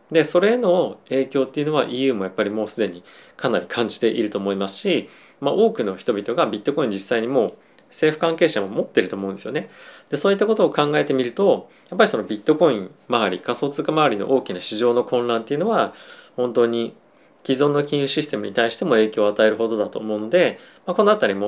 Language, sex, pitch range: Japanese, male, 105-155 Hz